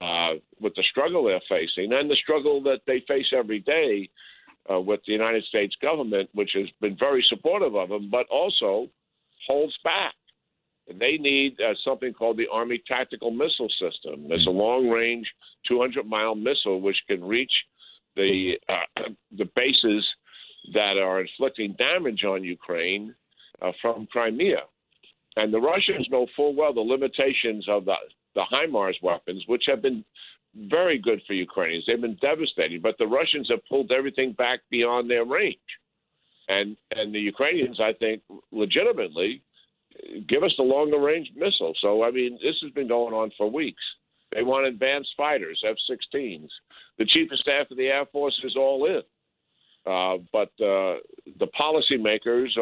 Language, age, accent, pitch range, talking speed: English, 50-69, American, 105-145 Hz, 155 wpm